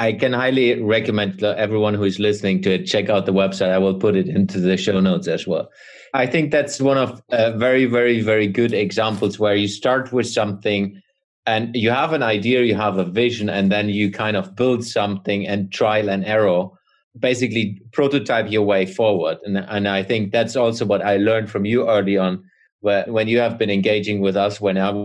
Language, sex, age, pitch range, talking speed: English, male, 30-49, 100-125 Hz, 210 wpm